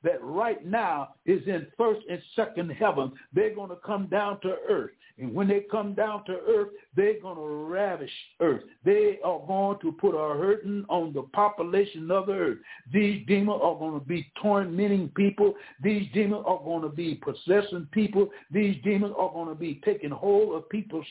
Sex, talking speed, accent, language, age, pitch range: male, 190 wpm, American, English, 60-79, 165-205 Hz